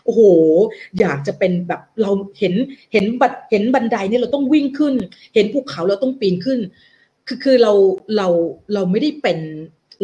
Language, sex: Thai, female